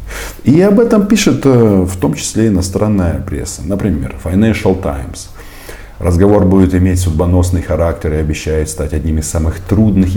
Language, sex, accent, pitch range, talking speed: Russian, male, native, 80-95 Hz, 140 wpm